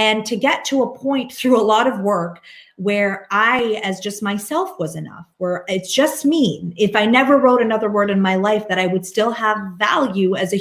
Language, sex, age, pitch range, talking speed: English, female, 30-49, 185-240 Hz, 220 wpm